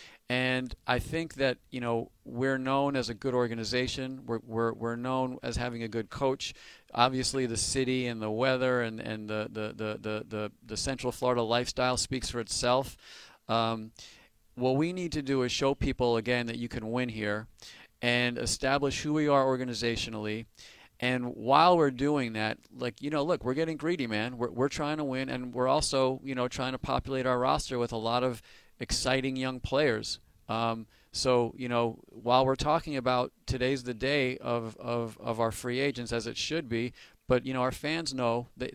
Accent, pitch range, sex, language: American, 115-135 Hz, male, English